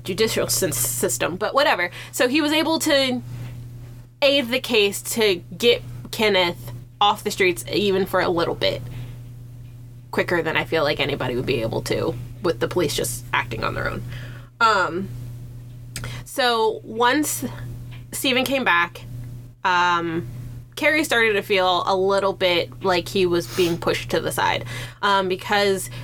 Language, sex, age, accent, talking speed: English, female, 20-39, American, 150 wpm